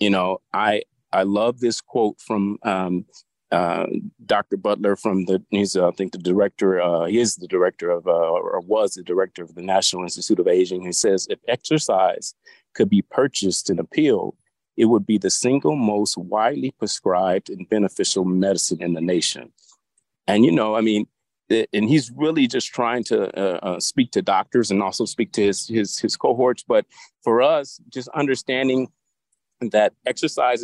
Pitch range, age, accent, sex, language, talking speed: 95-135 Hz, 40-59, American, male, English, 180 wpm